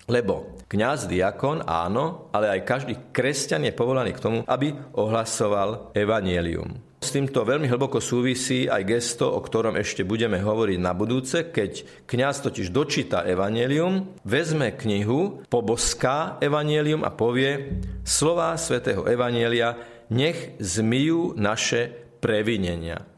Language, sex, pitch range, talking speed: Slovak, male, 110-140 Hz, 120 wpm